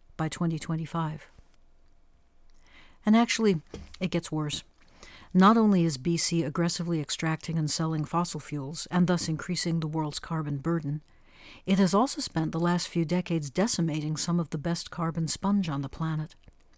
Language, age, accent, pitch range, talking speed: English, 60-79, American, 150-180 Hz, 150 wpm